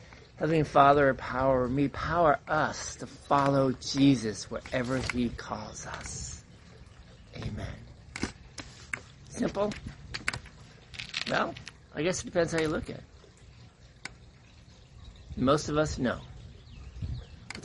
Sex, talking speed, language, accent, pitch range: male, 100 wpm, English, American, 110-140 Hz